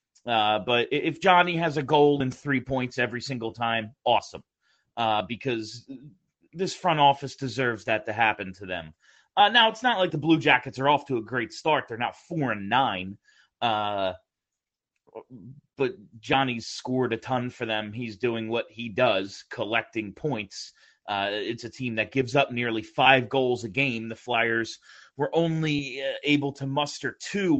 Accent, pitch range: American, 115-145 Hz